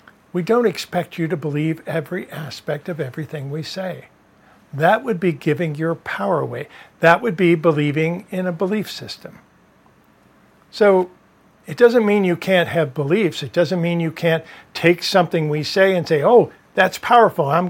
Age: 50-69